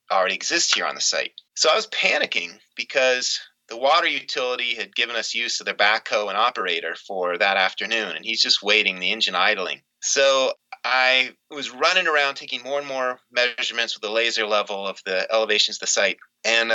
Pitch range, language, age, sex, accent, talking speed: 115-140 Hz, English, 30-49, male, American, 195 wpm